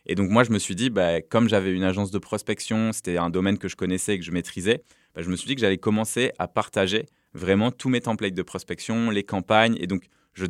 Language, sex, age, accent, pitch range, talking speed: French, male, 20-39, French, 95-115 Hz, 255 wpm